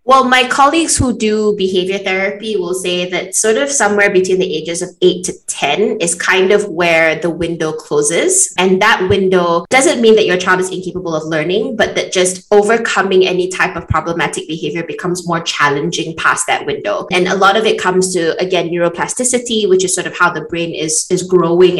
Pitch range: 180-220 Hz